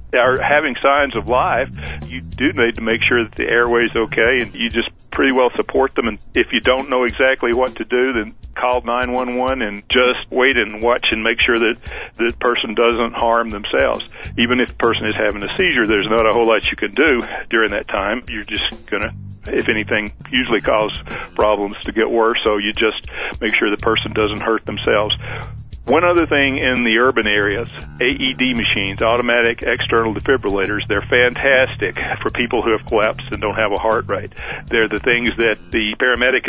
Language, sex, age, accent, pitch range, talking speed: English, male, 50-69, American, 110-125 Hz, 195 wpm